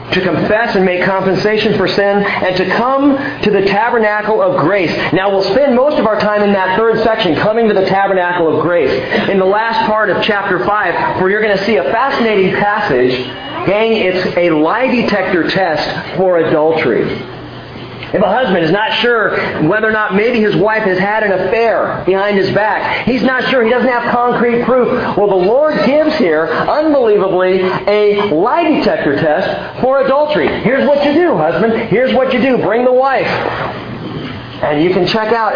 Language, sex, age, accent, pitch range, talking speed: English, male, 40-59, American, 180-240 Hz, 185 wpm